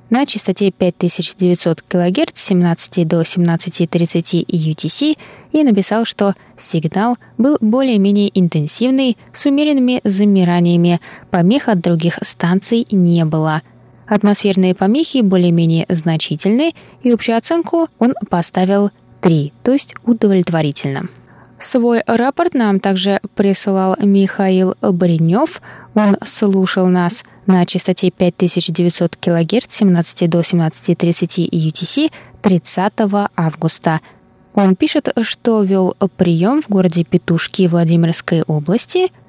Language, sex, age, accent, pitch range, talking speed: Russian, female, 20-39, native, 170-220 Hz, 100 wpm